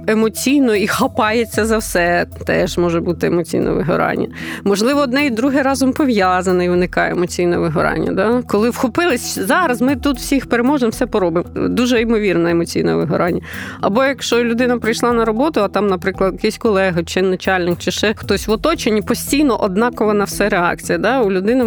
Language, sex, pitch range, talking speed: Ukrainian, female, 190-245 Hz, 165 wpm